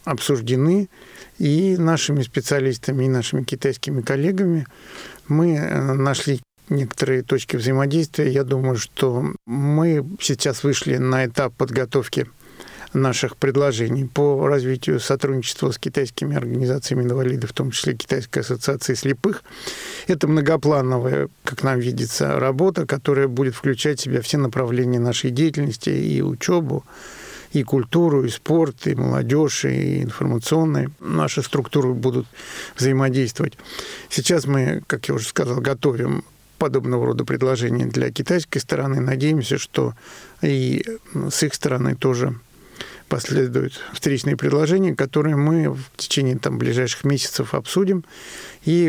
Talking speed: 120 wpm